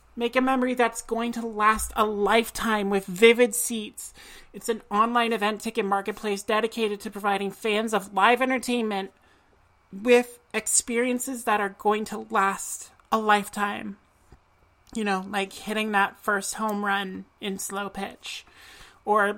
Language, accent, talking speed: English, American, 140 wpm